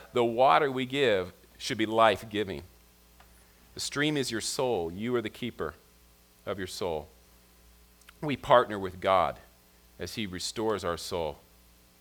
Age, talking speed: 40-59, 140 wpm